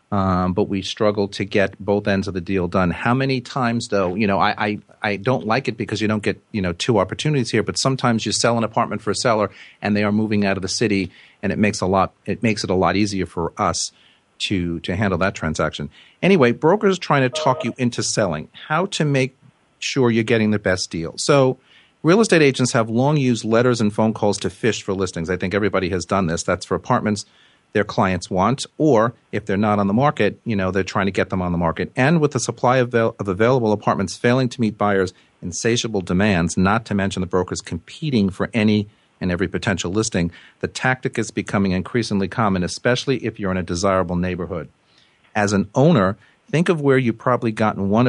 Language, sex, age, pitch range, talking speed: English, male, 40-59, 95-120 Hz, 220 wpm